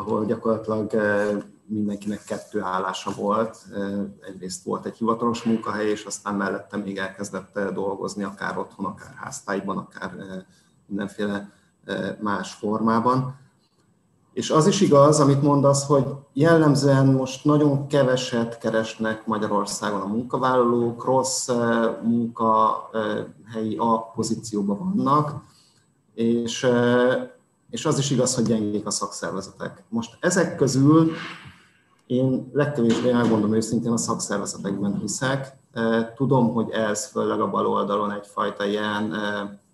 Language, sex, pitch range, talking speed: Hungarian, male, 105-130 Hz, 110 wpm